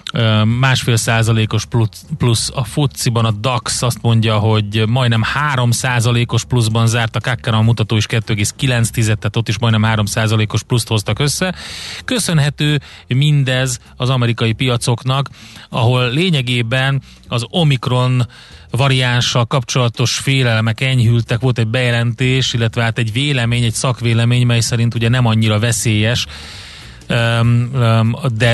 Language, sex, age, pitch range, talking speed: Hungarian, male, 30-49, 115-130 Hz, 125 wpm